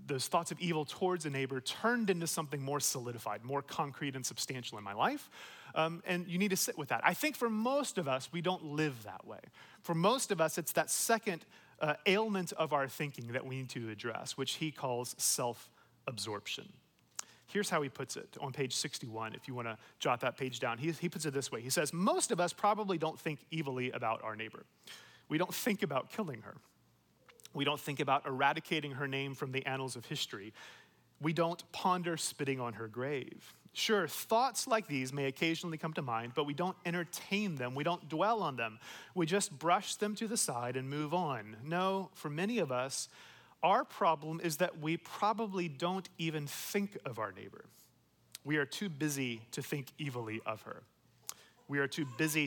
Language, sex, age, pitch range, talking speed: English, male, 30-49, 130-175 Hz, 200 wpm